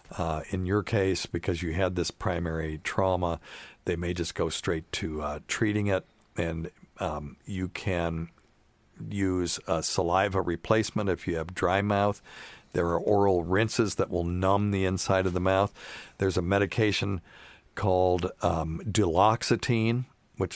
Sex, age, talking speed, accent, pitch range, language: male, 50-69, 150 wpm, American, 90-110 Hz, English